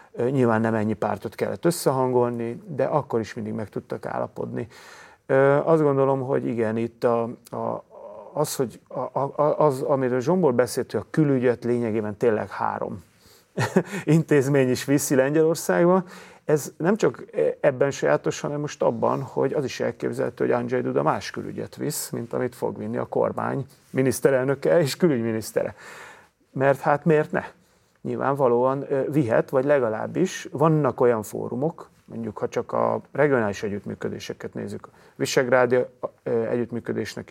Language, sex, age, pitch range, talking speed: Hungarian, male, 40-59, 115-150 Hz, 140 wpm